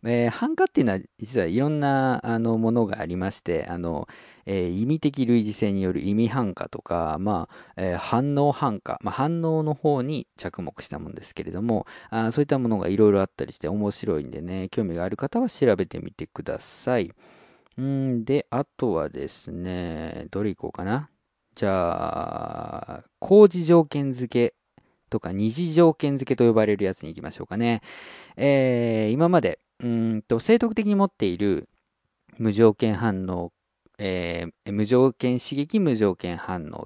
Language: Japanese